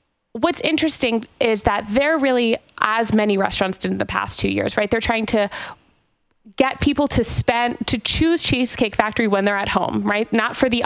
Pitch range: 195-235 Hz